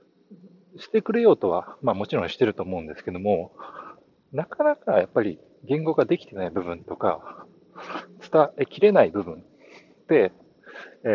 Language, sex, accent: Japanese, male, native